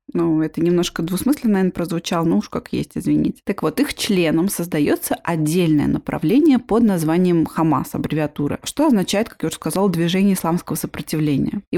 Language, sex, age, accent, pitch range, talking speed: Russian, female, 20-39, native, 165-225 Hz, 165 wpm